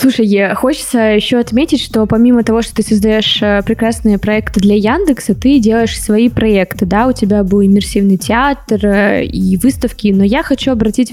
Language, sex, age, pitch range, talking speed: Russian, female, 20-39, 205-235 Hz, 160 wpm